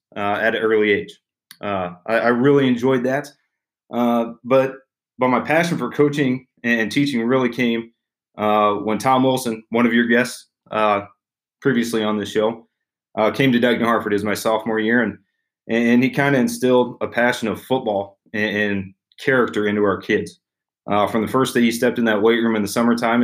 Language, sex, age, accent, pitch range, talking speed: English, male, 30-49, American, 105-130 Hz, 190 wpm